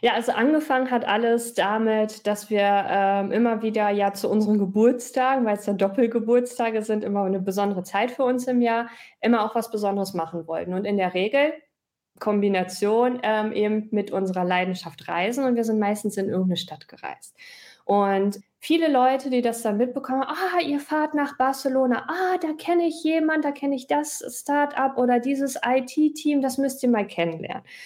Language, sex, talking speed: German, female, 185 wpm